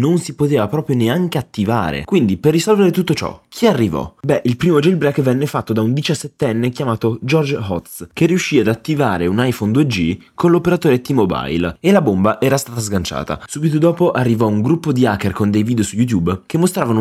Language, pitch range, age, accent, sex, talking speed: Italian, 105-150 Hz, 20-39, native, male, 195 wpm